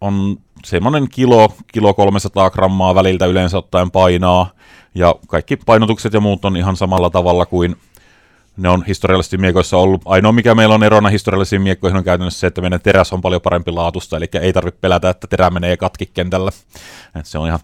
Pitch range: 90-100 Hz